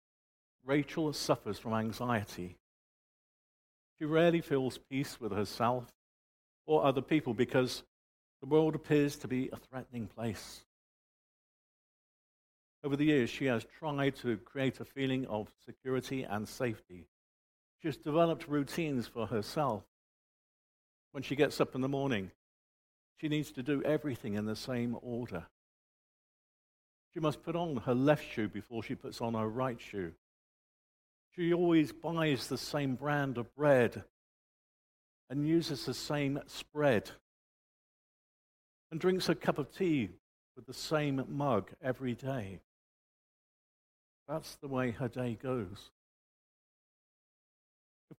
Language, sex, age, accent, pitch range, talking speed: English, male, 50-69, British, 115-150 Hz, 130 wpm